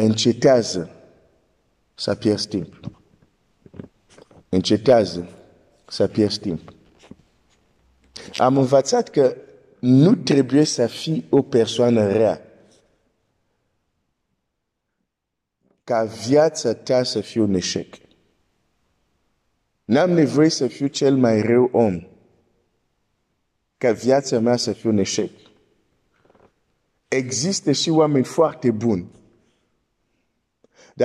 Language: Romanian